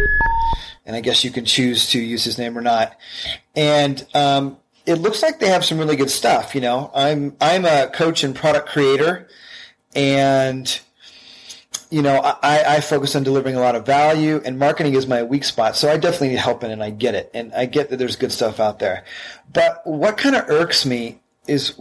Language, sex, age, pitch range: English, male, 30-49, 130-160 Hz